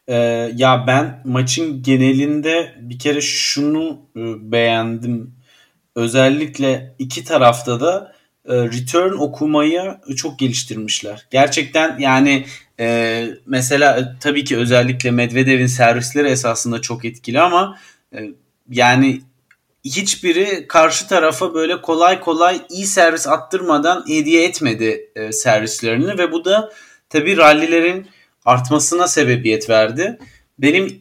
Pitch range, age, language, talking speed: 120-165 Hz, 40-59, Turkish, 95 wpm